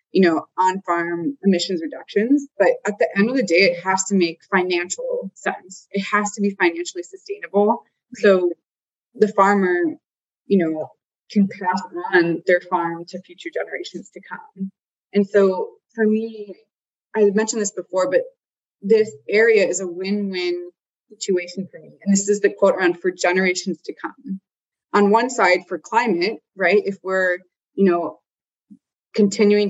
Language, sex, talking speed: English, female, 155 wpm